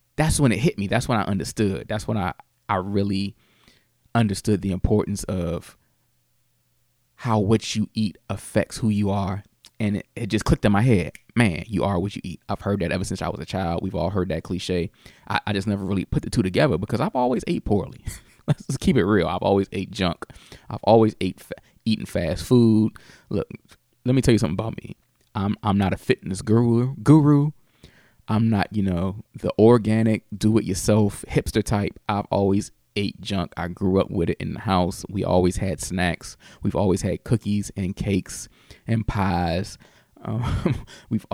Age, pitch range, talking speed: 20-39, 95-110 Hz, 190 wpm